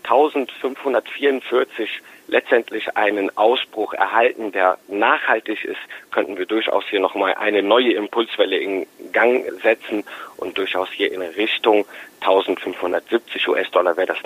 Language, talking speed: German, 115 wpm